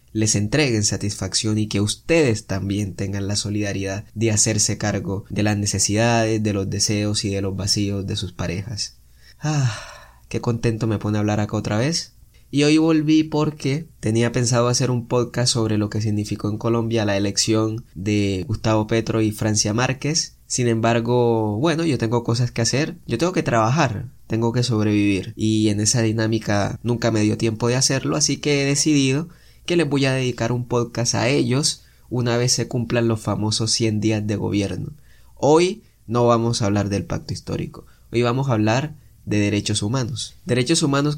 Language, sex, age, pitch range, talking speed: Spanish, male, 20-39, 105-125 Hz, 180 wpm